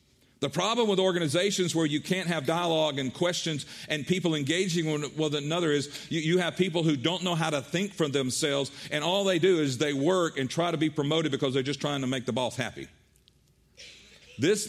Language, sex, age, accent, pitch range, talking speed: English, male, 50-69, American, 140-175 Hz, 210 wpm